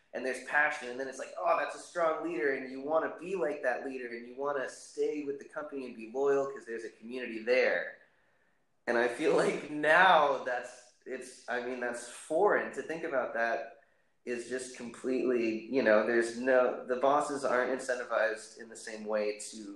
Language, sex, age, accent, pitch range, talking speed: English, male, 20-39, American, 120-150 Hz, 205 wpm